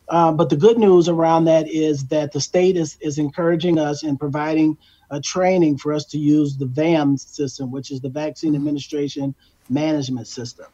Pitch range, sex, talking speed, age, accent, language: 140-165 Hz, male, 185 wpm, 40-59, American, English